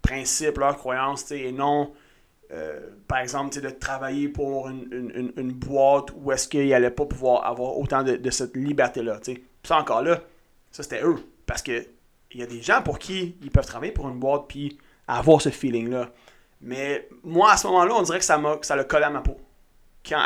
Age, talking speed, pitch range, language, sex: 30-49, 205 wpm, 125-155 Hz, French, male